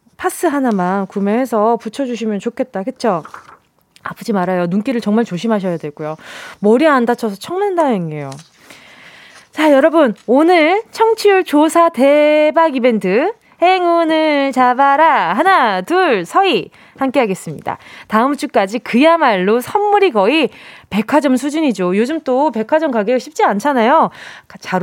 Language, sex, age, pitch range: Korean, female, 20-39, 215-325 Hz